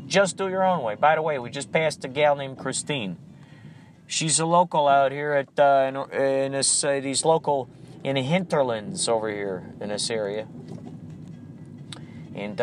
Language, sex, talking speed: English, male, 170 wpm